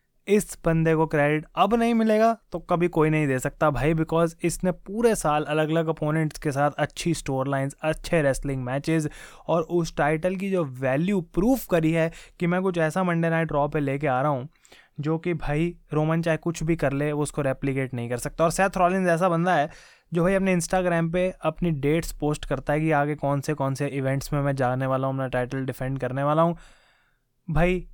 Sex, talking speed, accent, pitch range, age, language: male, 215 wpm, native, 145-175 Hz, 20-39, Hindi